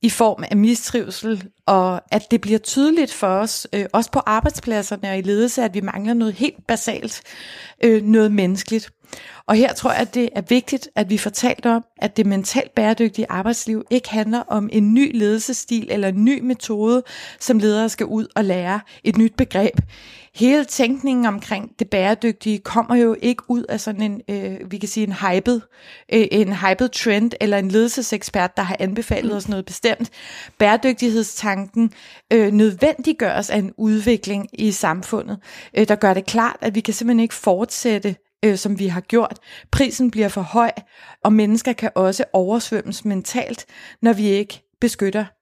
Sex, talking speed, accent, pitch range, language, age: female, 175 wpm, native, 205-235 Hz, Danish, 30-49